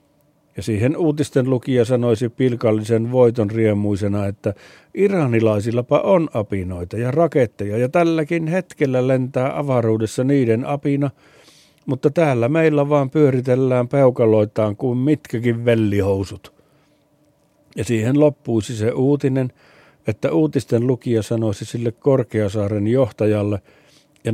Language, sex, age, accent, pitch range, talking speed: Finnish, male, 60-79, native, 110-145 Hz, 105 wpm